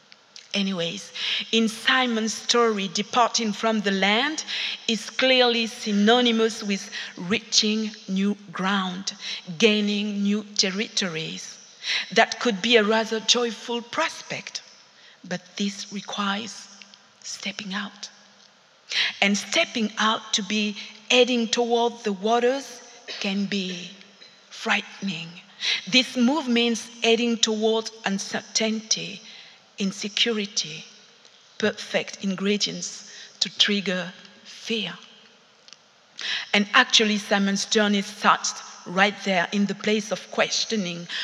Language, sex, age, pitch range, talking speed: English, female, 50-69, 200-235 Hz, 95 wpm